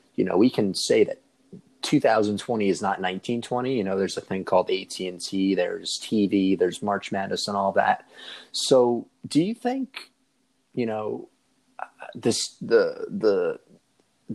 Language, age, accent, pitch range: English, 30-49, American, 100-135 Hz